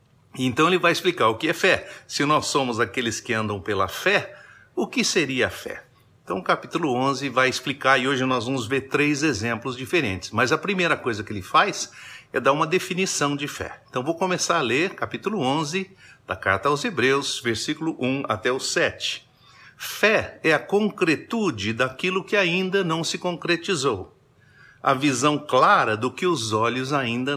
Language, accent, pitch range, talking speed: Portuguese, Brazilian, 125-175 Hz, 180 wpm